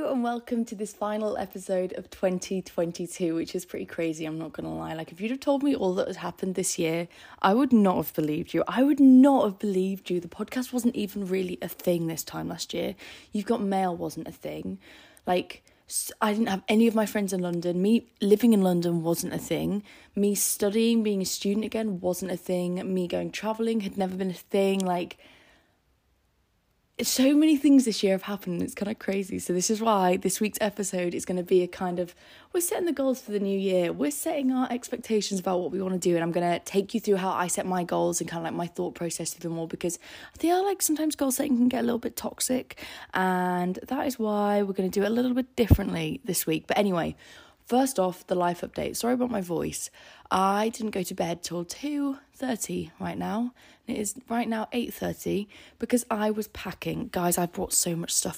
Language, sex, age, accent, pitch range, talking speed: English, female, 20-39, British, 180-230 Hz, 225 wpm